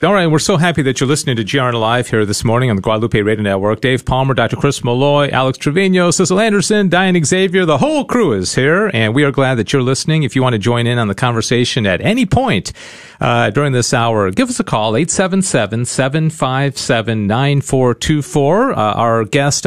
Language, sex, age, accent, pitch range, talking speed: English, male, 40-59, American, 120-170 Hz, 200 wpm